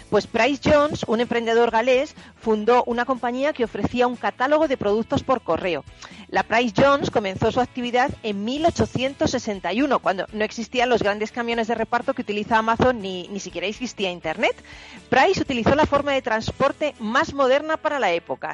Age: 40-59